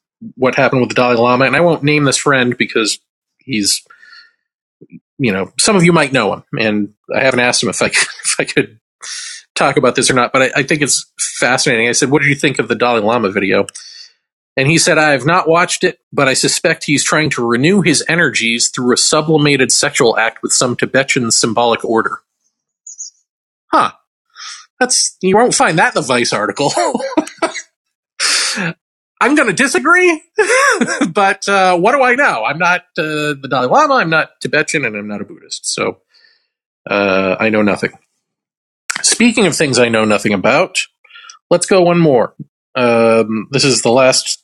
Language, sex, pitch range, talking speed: English, male, 120-200 Hz, 180 wpm